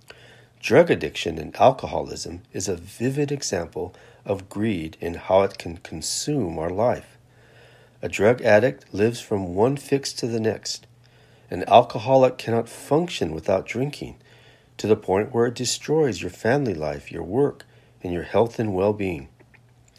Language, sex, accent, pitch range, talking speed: English, male, American, 100-130 Hz, 145 wpm